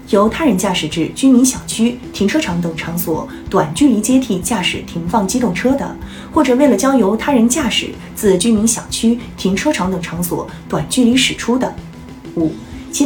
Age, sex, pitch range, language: 20-39, female, 175-270 Hz, Chinese